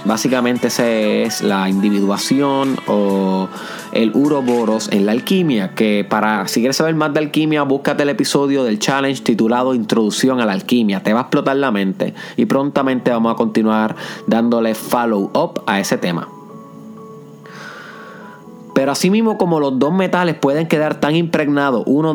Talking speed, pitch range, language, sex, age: 155 wpm, 105-150 Hz, Spanish, male, 30-49